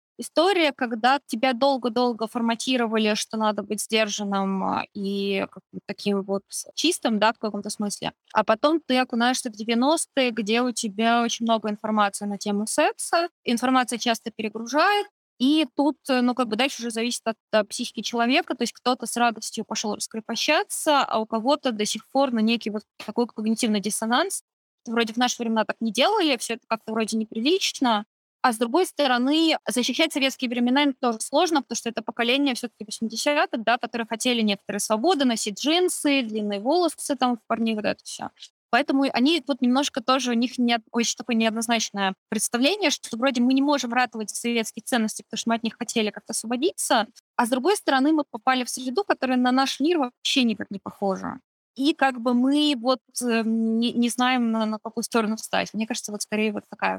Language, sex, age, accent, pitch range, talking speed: Russian, female, 20-39, native, 220-270 Hz, 180 wpm